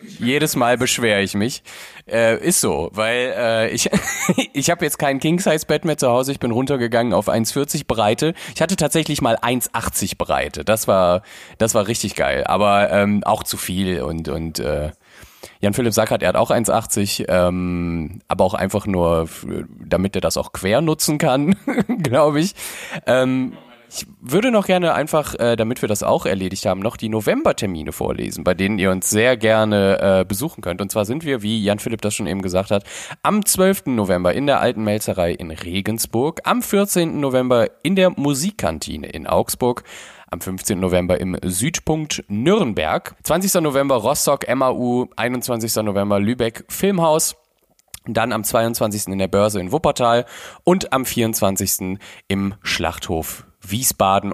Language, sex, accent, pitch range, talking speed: German, male, German, 95-130 Hz, 160 wpm